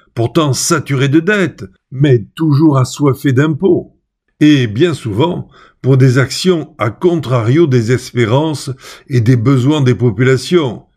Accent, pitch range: French, 120-160 Hz